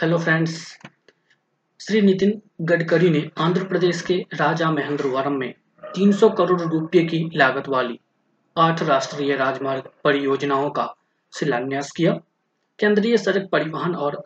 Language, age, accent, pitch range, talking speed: Hindi, 20-39, native, 145-185 Hz, 125 wpm